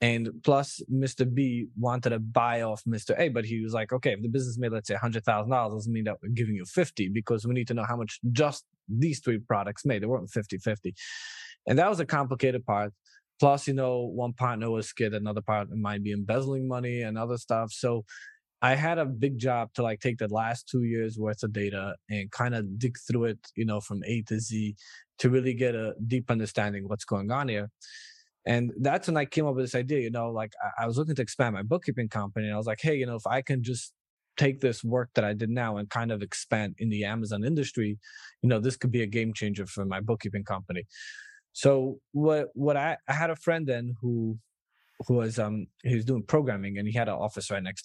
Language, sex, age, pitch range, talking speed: English, male, 20-39, 110-130 Hz, 240 wpm